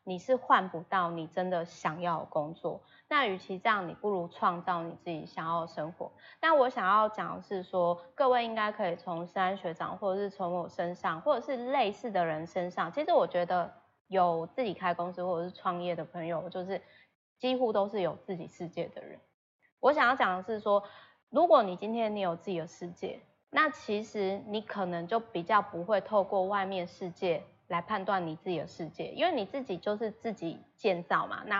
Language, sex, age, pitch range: Chinese, female, 20-39, 175-230 Hz